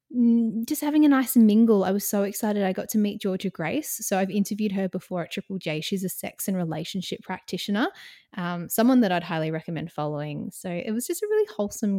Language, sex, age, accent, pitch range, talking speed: English, female, 20-39, Australian, 185-230 Hz, 215 wpm